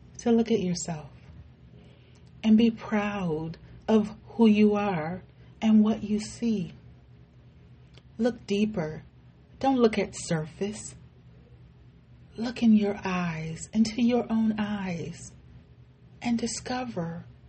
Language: English